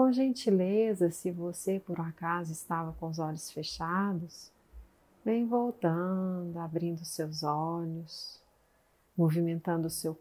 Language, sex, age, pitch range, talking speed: Portuguese, female, 40-59, 165-195 Hz, 120 wpm